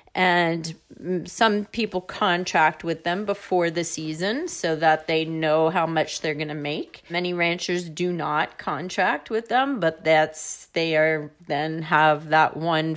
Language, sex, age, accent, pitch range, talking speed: English, female, 30-49, American, 155-190 Hz, 155 wpm